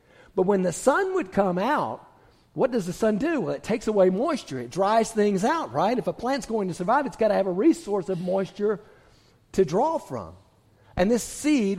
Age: 50-69